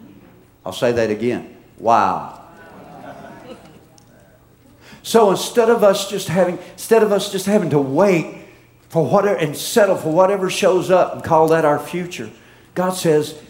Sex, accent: male, American